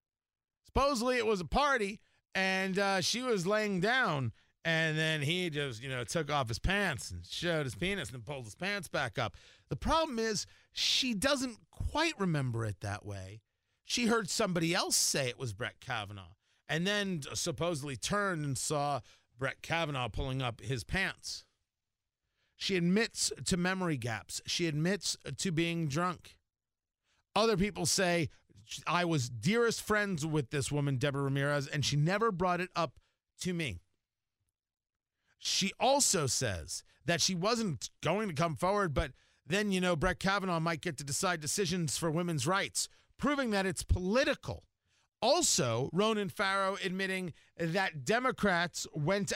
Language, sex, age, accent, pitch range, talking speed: English, male, 40-59, American, 130-195 Hz, 155 wpm